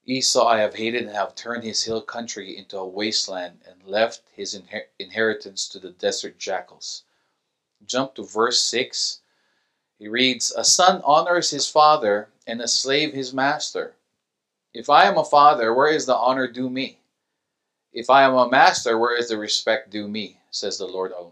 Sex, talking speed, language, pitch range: male, 175 wpm, English, 110-135 Hz